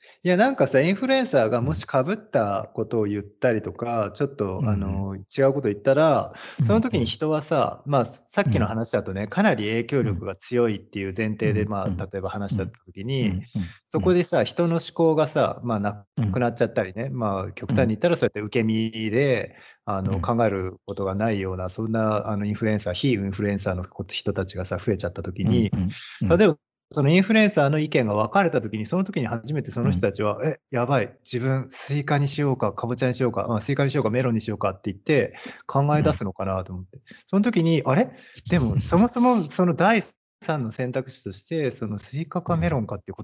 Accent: native